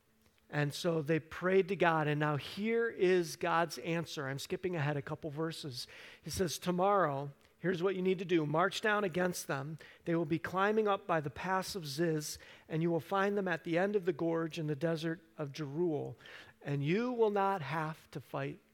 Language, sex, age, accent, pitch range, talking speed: English, male, 50-69, American, 150-185 Hz, 205 wpm